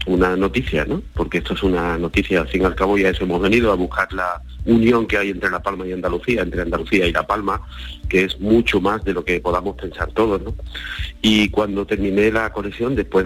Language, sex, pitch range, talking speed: Spanish, male, 95-110 Hz, 225 wpm